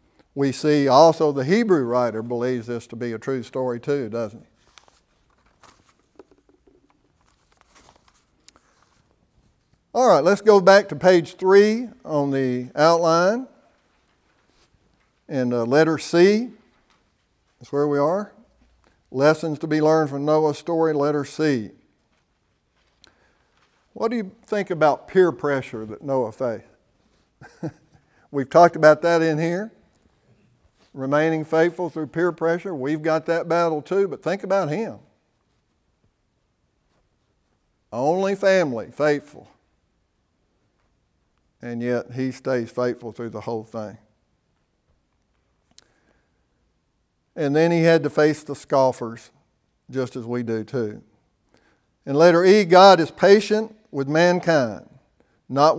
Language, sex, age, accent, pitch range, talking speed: English, male, 60-79, American, 120-170 Hz, 115 wpm